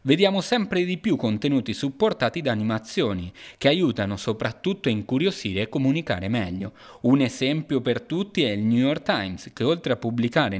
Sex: male